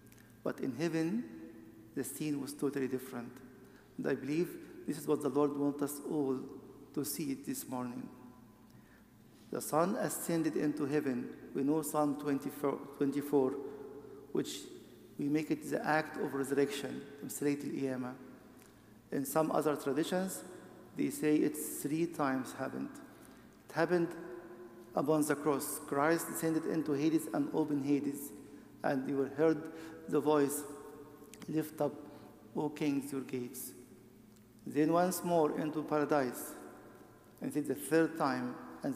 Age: 50-69